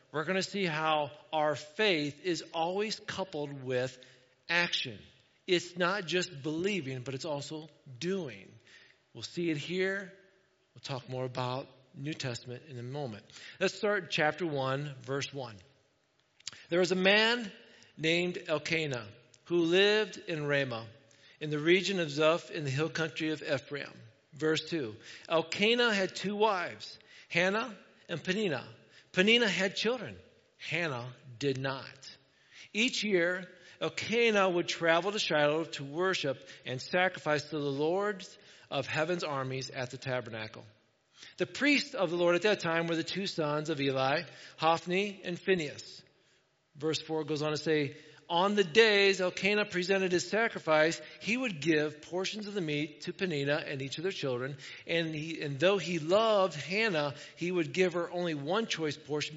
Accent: American